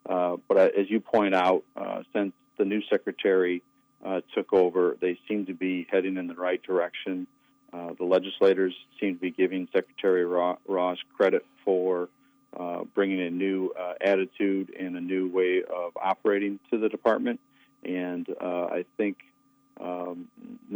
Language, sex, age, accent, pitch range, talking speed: English, male, 50-69, American, 90-110 Hz, 155 wpm